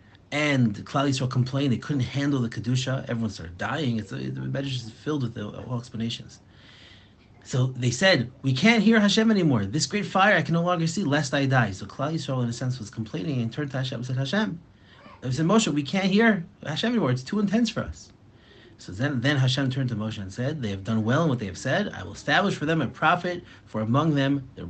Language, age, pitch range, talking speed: English, 30-49, 115-150 Hz, 235 wpm